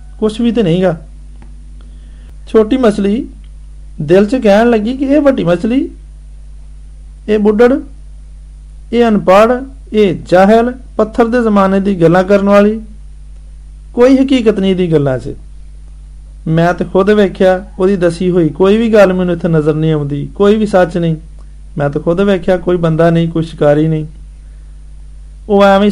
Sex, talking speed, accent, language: male, 120 wpm, native, Hindi